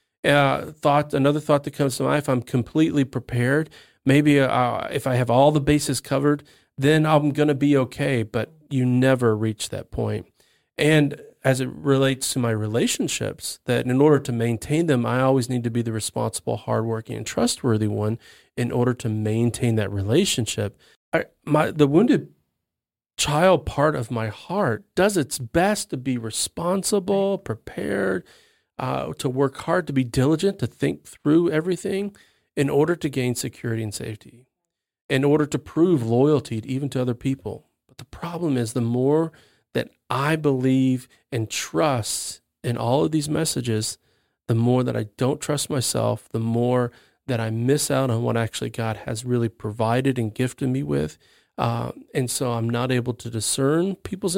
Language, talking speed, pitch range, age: English, 170 wpm, 115-150 Hz, 40-59